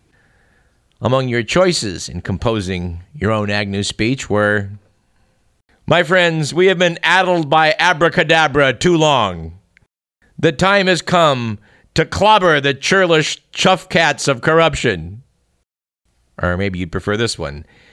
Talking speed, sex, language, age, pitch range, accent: 125 wpm, male, English, 50-69, 110-165 Hz, American